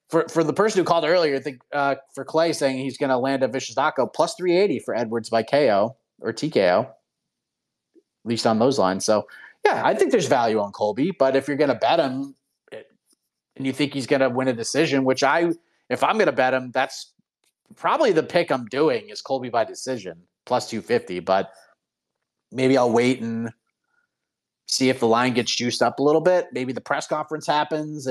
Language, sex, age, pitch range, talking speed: English, male, 30-49, 130-175 Hz, 205 wpm